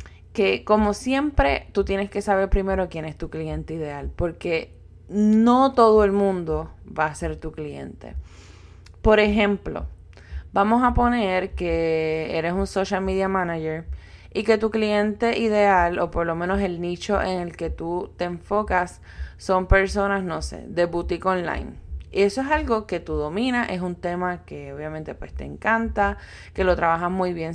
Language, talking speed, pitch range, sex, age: Spanish, 170 wpm, 155-195 Hz, female, 20-39